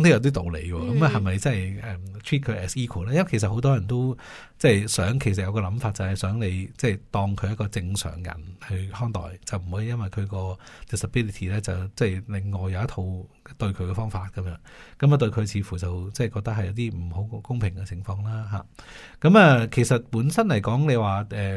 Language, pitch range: Chinese, 95-120 Hz